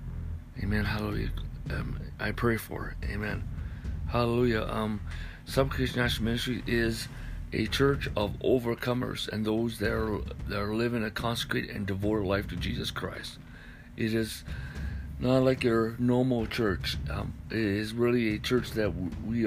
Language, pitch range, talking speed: English, 95-120 Hz, 150 wpm